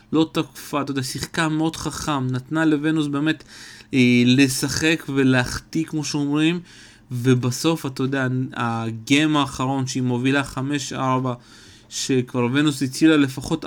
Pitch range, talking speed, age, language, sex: 120-145 Hz, 115 wpm, 30-49, Hebrew, male